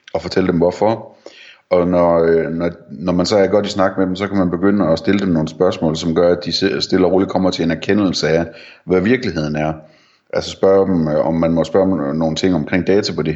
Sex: male